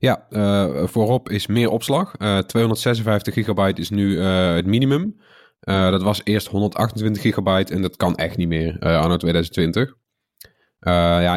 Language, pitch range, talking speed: Dutch, 90-105 Hz, 165 wpm